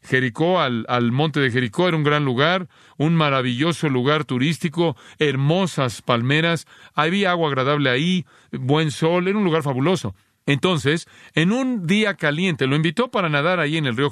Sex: male